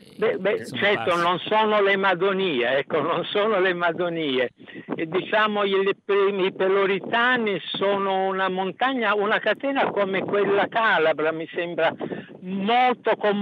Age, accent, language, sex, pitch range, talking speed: 60-79, native, Italian, male, 180-205 Hz, 120 wpm